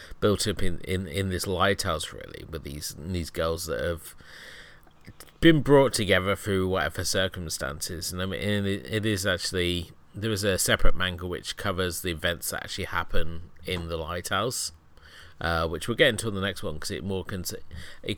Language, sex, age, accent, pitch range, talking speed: English, male, 30-49, British, 85-105 Hz, 190 wpm